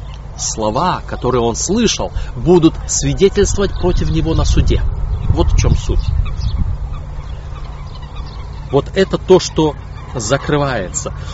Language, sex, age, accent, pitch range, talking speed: Russian, male, 30-49, native, 100-150 Hz, 100 wpm